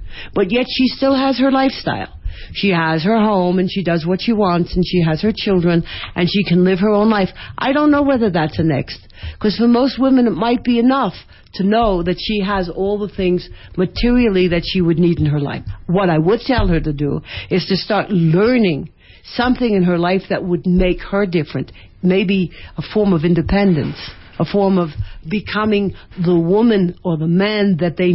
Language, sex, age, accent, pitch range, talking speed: Spanish, female, 60-79, American, 160-205 Hz, 205 wpm